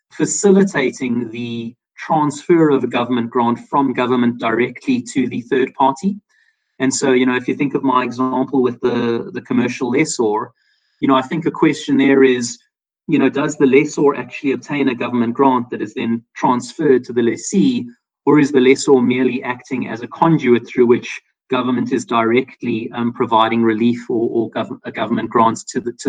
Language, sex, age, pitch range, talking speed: English, male, 30-49, 120-145 Hz, 180 wpm